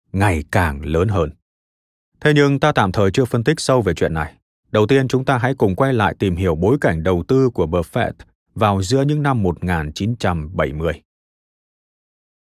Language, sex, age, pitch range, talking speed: Vietnamese, male, 30-49, 90-130 Hz, 180 wpm